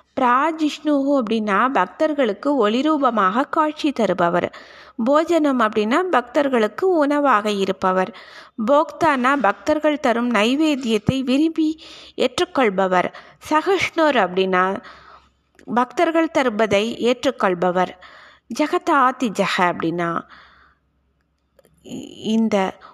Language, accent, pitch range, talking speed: Tamil, native, 195-285 Hz, 70 wpm